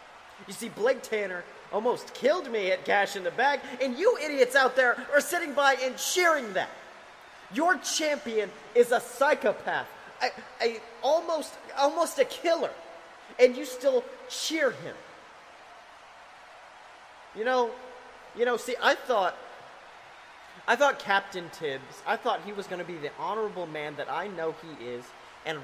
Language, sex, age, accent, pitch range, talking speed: English, male, 30-49, American, 170-280 Hz, 155 wpm